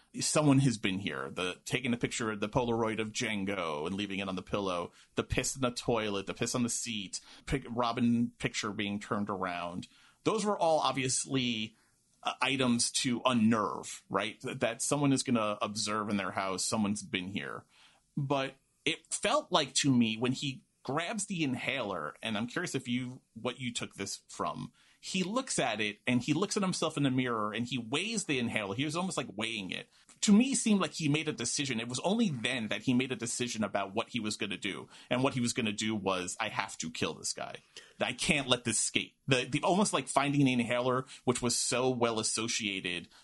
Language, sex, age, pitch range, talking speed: English, male, 30-49, 110-135 Hz, 210 wpm